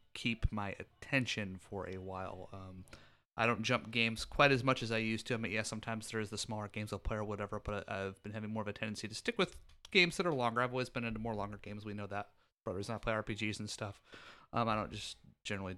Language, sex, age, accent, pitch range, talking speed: English, male, 30-49, American, 105-120 Hz, 255 wpm